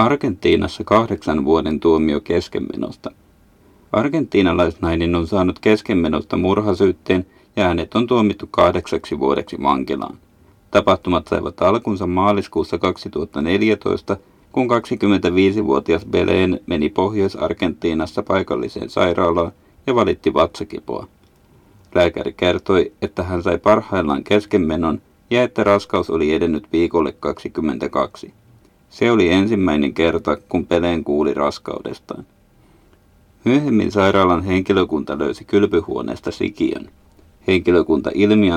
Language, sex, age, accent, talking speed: Finnish, male, 30-49, native, 95 wpm